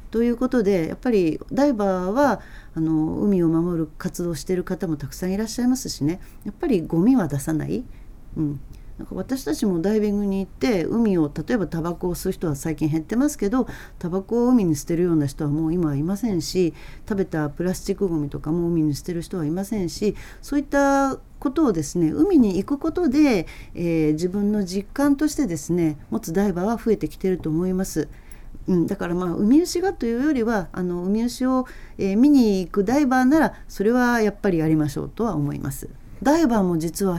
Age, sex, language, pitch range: 40-59, female, Japanese, 160-225 Hz